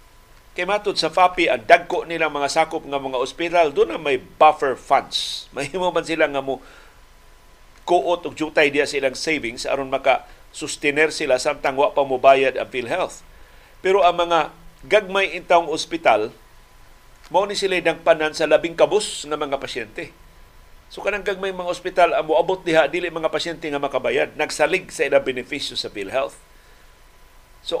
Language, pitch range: Filipino, 135-175 Hz